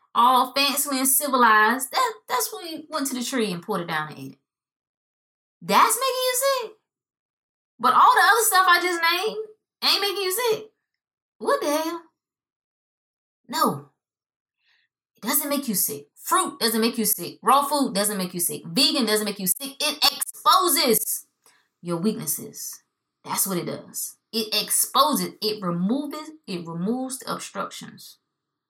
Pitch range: 175-290 Hz